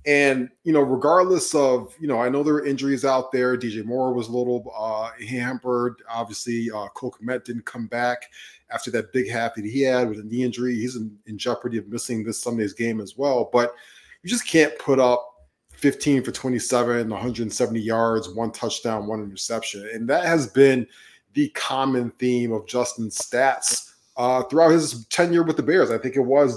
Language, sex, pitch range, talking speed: English, male, 115-140 Hz, 195 wpm